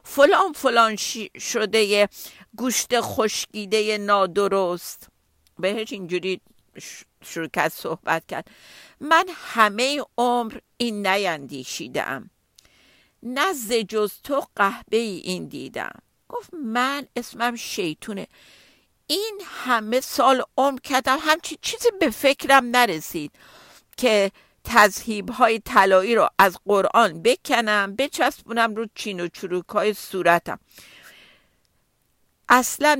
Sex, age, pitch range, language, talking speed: female, 50-69, 195-255 Hz, Persian, 100 wpm